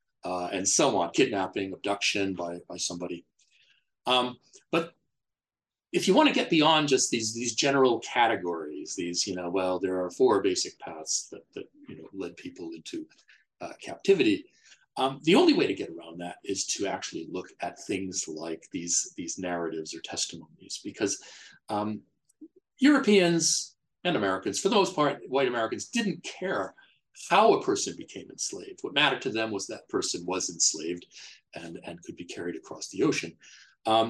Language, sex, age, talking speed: English, male, 40-59, 165 wpm